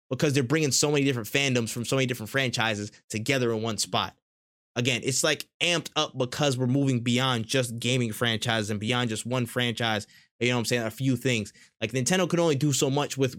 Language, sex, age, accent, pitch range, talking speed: English, male, 20-39, American, 120-150 Hz, 220 wpm